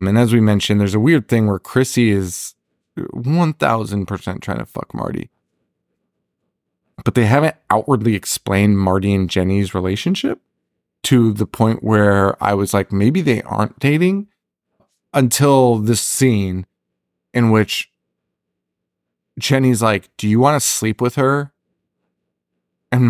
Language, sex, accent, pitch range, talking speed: English, male, American, 100-135 Hz, 130 wpm